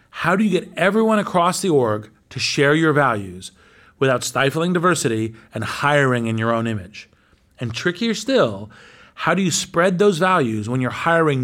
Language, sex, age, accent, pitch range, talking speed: English, male, 40-59, American, 110-165 Hz, 175 wpm